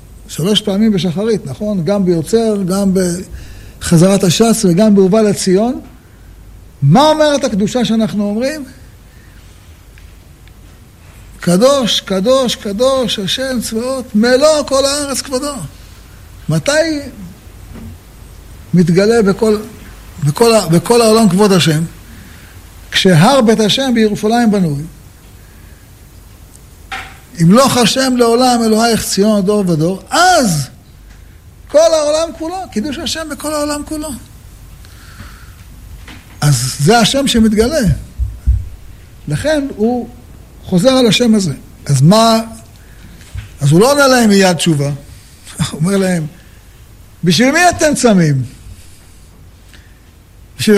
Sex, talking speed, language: male, 100 wpm, Hebrew